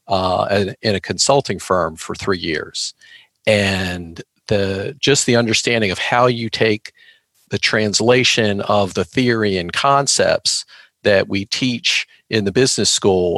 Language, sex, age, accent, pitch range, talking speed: English, male, 50-69, American, 95-115 Hz, 135 wpm